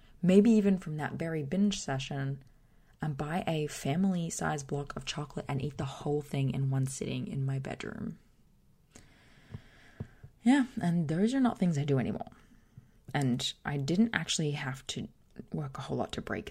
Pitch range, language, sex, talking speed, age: 135-180 Hz, English, female, 170 wpm, 20-39